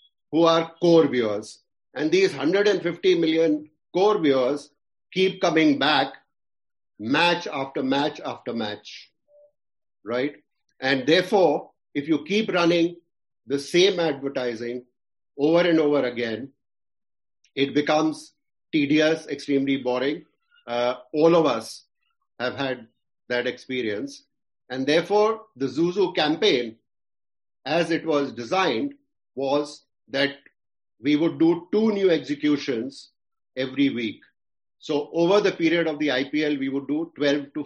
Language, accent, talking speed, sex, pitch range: English, Indian, 120 wpm, male, 130-170 Hz